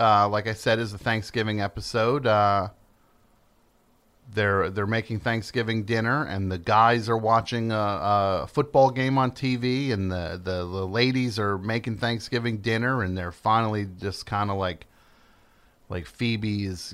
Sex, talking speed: male, 150 wpm